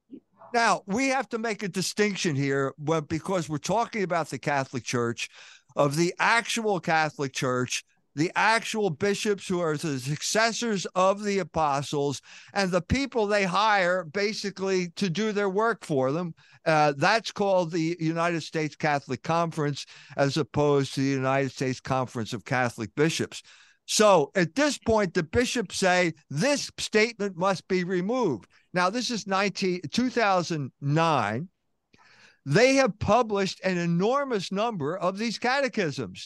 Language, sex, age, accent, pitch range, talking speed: English, male, 50-69, American, 145-210 Hz, 140 wpm